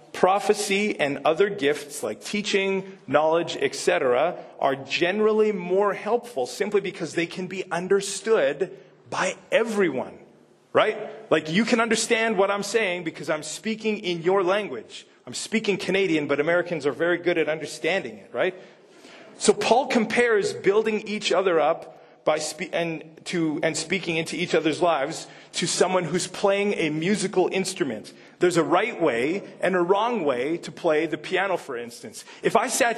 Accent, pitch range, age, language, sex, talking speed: American, 160-205 Hz, 40-59, English, male, 160 wpm